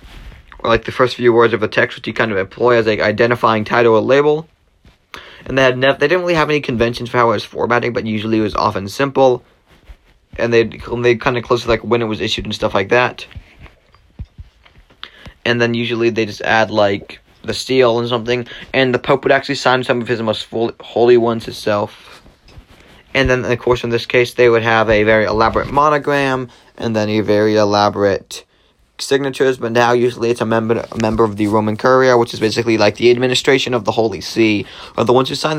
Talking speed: 215 wpm